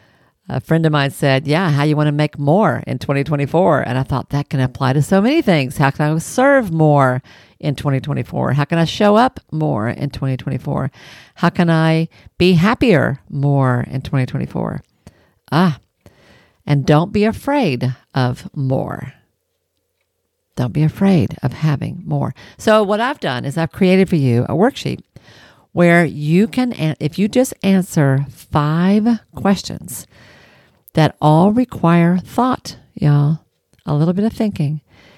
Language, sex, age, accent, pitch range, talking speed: English, female, 50-69, American, 135-175 Hz, 155 wpm